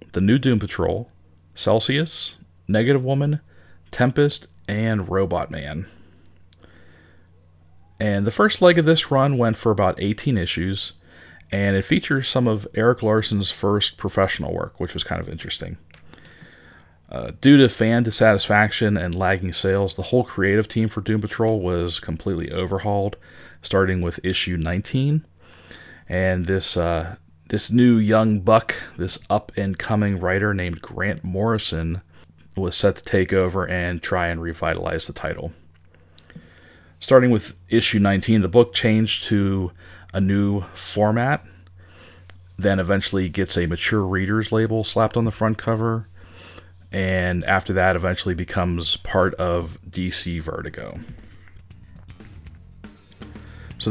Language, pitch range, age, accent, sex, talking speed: English, 85-110 Hz, 40-59, American, male, 130 wpm